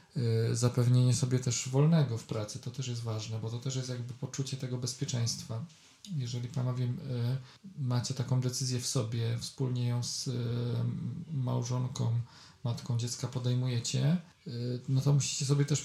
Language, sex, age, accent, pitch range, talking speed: Polish, male, 40-59, native, 125-140 Hz, 140 wpm